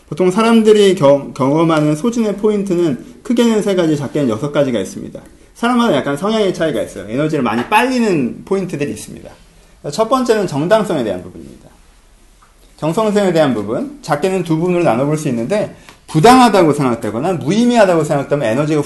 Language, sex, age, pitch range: Korean, male, 30-49, 145-220 Hz